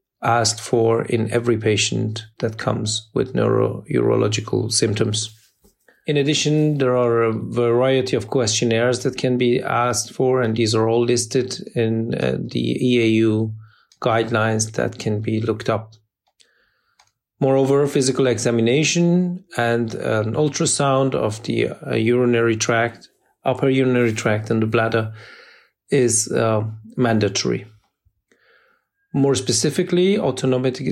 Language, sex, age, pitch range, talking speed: English, male, 40-59, 115-135 Hz, 120 wpm